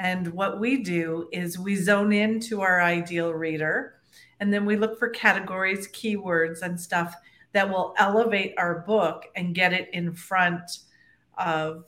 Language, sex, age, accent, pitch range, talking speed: English, female, 40-59, American, 170-210 Hz, 160 wpm